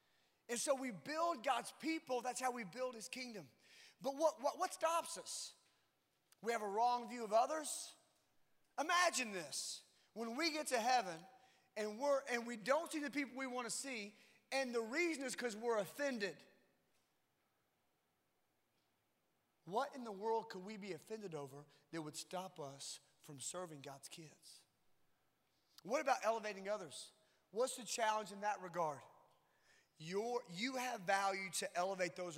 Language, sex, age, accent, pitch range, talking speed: English, male, 30-49, American, 200-275 Hz, 160 wpm